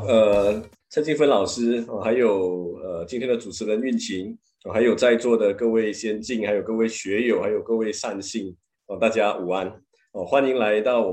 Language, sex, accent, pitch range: Chinese, male, Malaysian, 105-155 Hz